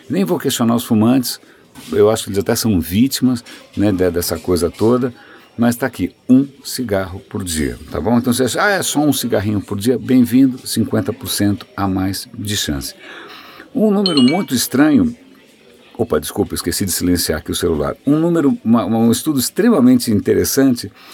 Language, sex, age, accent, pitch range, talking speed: Portuguese, male, 60-79, Brazilian, 100-130 Hz, 175 wpm